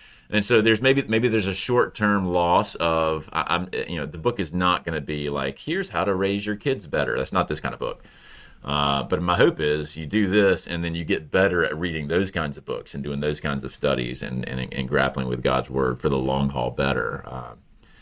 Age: 30-49